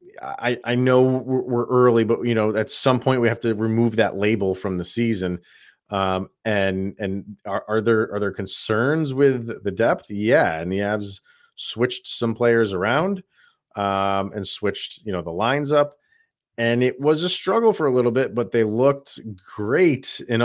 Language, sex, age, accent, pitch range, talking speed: English, male, 30-49, American, 95-125 Hz, 180 wpm